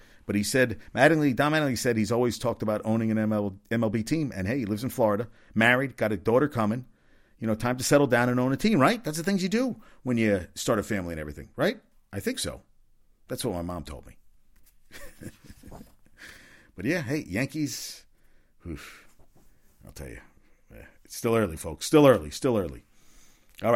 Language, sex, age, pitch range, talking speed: English, male, 50-69, 95-130 Hz, 195 wpm